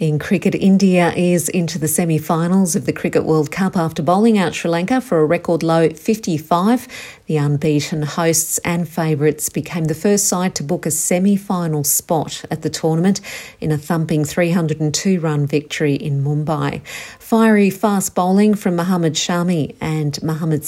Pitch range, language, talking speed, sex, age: 150-185 Hz, English, 155 wpm, female, 50-69